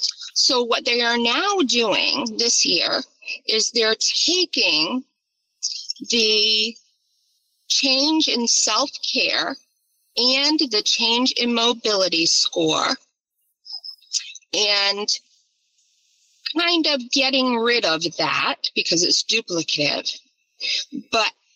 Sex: female